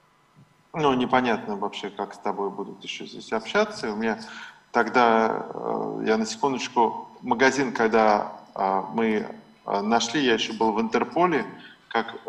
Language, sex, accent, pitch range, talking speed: Russian, male, native, 110-135 Hz, 125 wpm